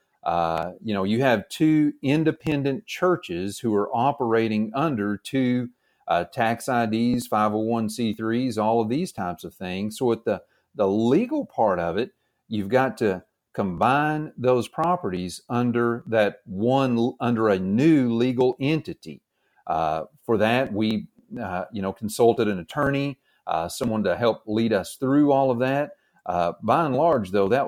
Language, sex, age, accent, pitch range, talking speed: English, male, 40-59, American, 100-135 Hz, 165 wpm